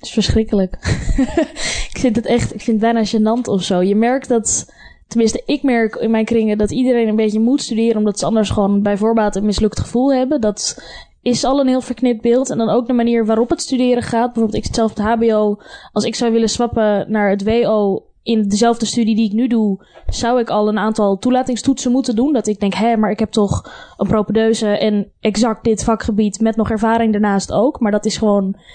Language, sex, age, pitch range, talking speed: Dutch, female, 10-29, 210-240 Hz, 225 wpm